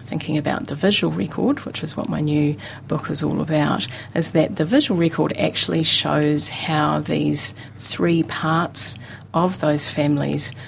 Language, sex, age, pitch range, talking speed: English, female, 40-59, 125-155 Hz, 155 wpm